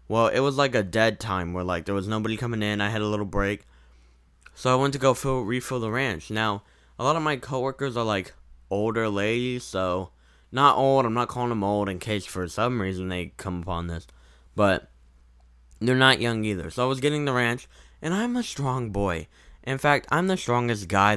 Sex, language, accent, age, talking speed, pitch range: male, English, American, 10-29, 220 wpm, 90-125 Hz